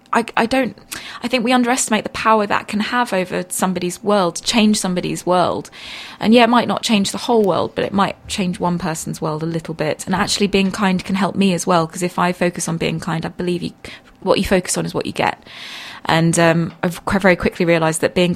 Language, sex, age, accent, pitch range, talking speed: English, female, 20-39, British, 160-195 Hz, 230 wpm